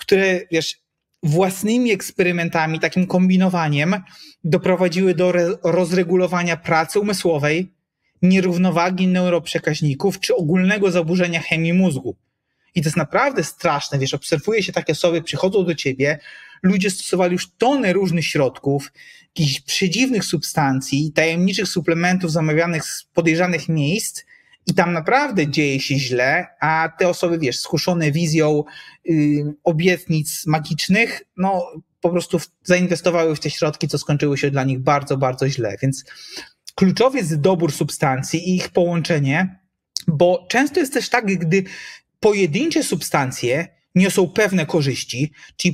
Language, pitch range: Polish, 155-185 Hz